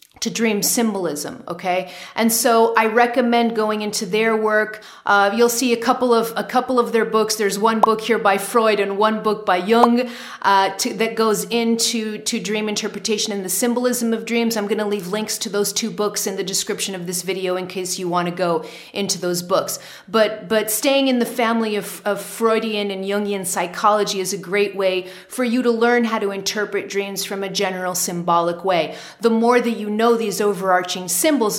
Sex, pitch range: female, 195-235 Hz